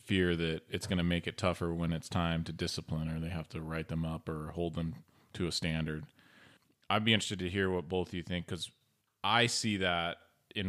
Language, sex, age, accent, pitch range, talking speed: English, male, 30-49, American, 85-95 Hz, 230 wpm